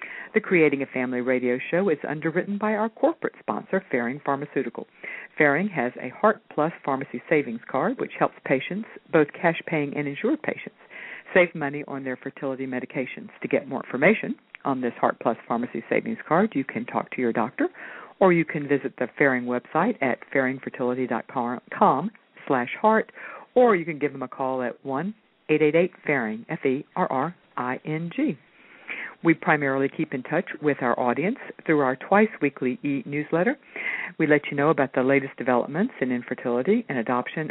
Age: 50-69